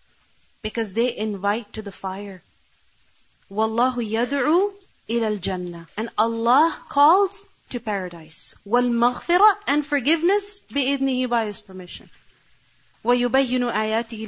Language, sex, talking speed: English, female, 95 wpm